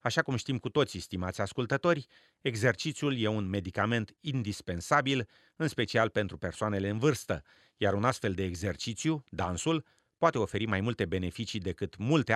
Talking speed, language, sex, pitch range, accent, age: 150 wpm, Romanian, male, 90-125 Hz, native, 40-59